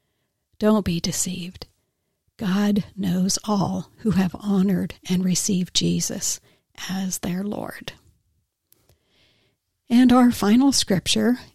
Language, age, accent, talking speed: English, 60-79, American, 100 wpm